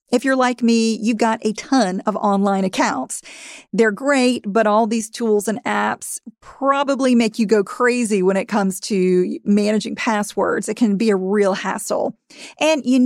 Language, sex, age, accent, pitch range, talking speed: English, female, 40-59, American, 210-275 Hz, 175 wpm